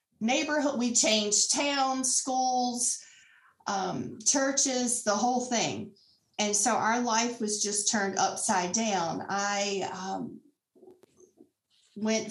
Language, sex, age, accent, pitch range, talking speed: English, female, 40-59, American, 200-255 Hz, 105 wpm